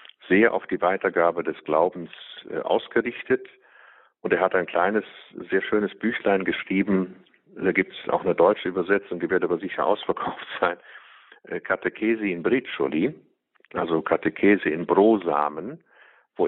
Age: 50-69